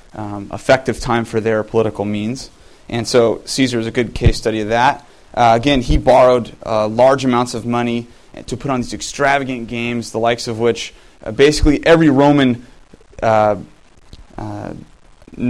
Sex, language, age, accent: male, English, 30-49, American